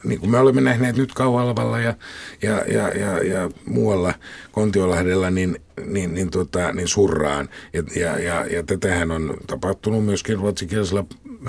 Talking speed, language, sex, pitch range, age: 150 wpm, Finnish, male, 85-110 Hz, 50-69